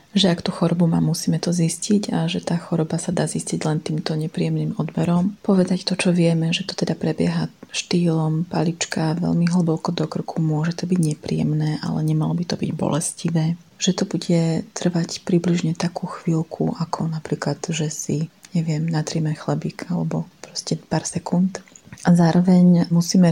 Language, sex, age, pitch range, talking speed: Slovak, female, 30-49, 165-180 Hz, 165 wpm